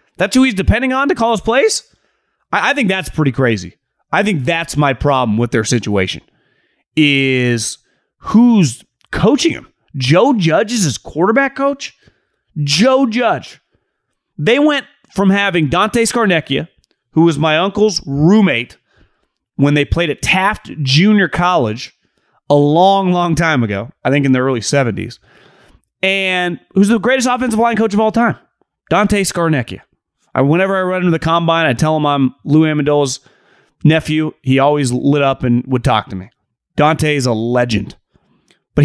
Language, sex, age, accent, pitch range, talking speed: English, male, 30-49, American, 140-215 Hz, 160 wpm